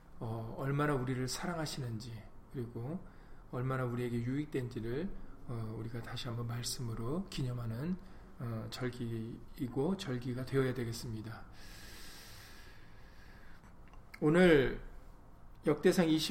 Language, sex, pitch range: Korean, male, 120-160 Hz